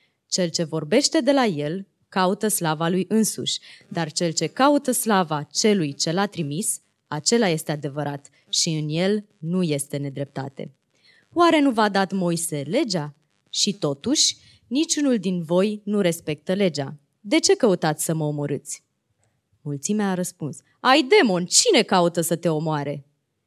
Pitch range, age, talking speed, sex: 155-225 Hz, 20-39, 150 wpm, female